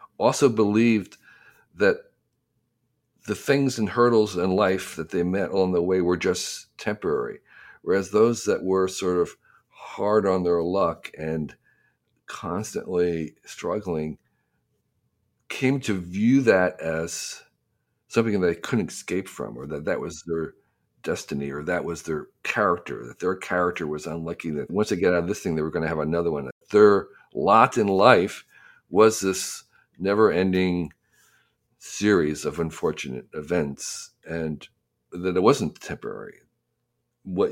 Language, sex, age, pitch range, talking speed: English, male, 50-69, 80-100 Hz, 145 wpm